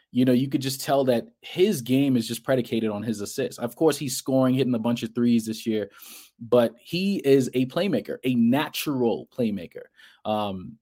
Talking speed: 195 wpm